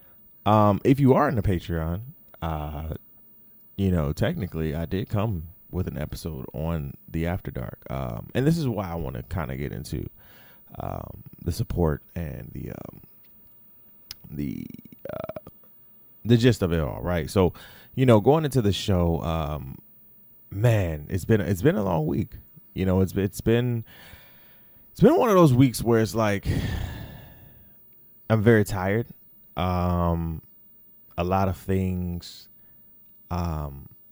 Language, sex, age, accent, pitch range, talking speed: English, male, 30-49, American, 80-105 Hz, 150 wpm